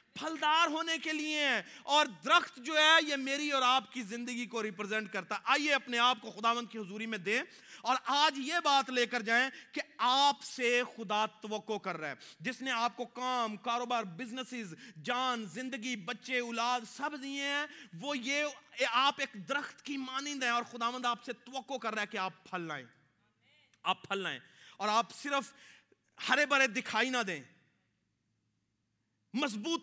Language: Urdu